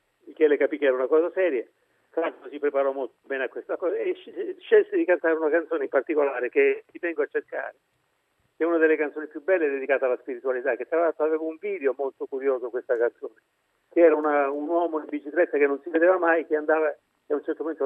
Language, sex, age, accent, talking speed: Italian, male, 50-69, native, 230 wpm